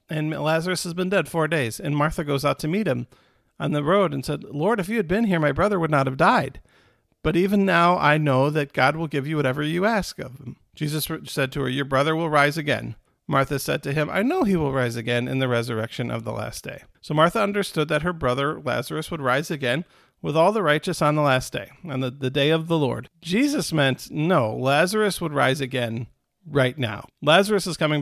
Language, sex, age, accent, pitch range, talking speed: English, male, 40-59, American, 135-175 Hz, 235 wpm